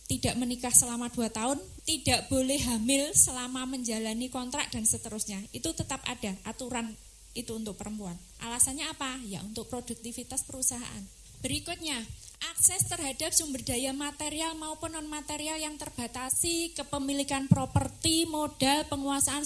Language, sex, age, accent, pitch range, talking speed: Indonesian, female, 20-39, native, 235-290 Hz, 125 wpm